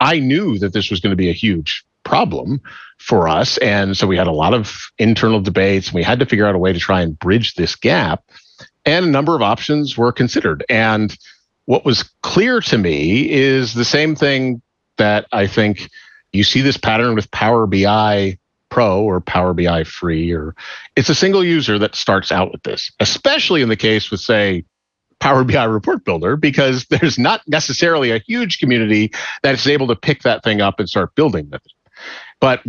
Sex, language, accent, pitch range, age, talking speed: male, English, American, 100-135 Hz, 50-69, 195 wpm